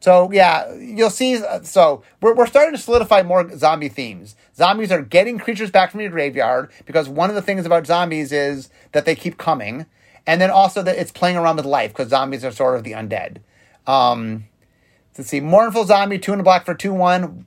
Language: English